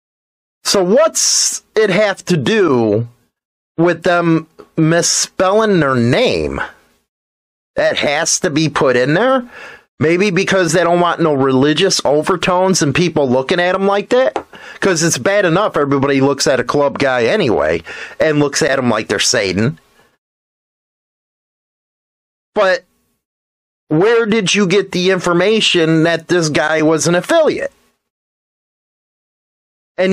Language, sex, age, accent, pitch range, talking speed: English, male, 30-49, American, 155-195 Hz, 130 wpm